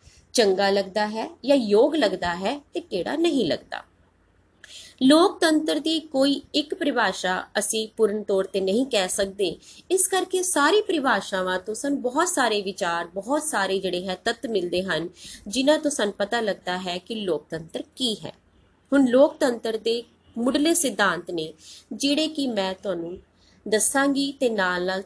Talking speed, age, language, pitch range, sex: 145 wpm, 20-39, Punjabi, 195-285 Hz, female